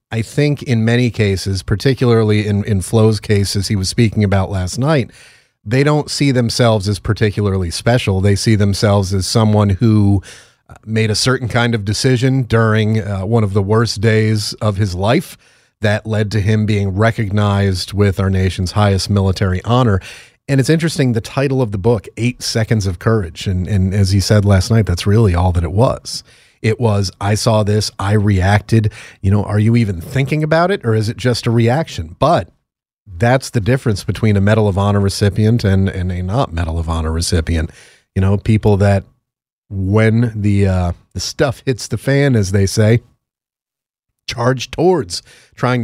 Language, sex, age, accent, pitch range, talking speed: English, male, 30-49, American, 100-120 Hz, 185 wpm